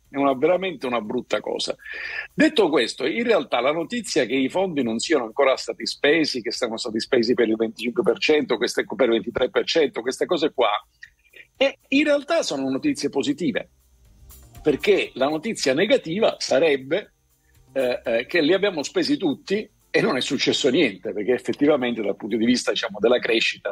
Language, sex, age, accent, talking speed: Italian, male, 50-69, native, 165 wpm